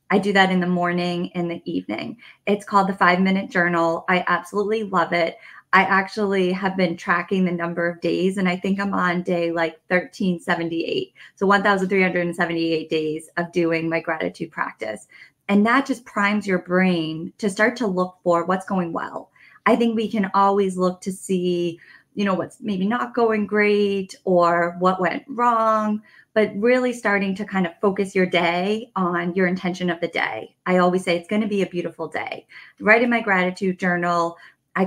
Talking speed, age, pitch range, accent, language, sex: 185 wpm, 20-39, 175-205 Hz, American, English, female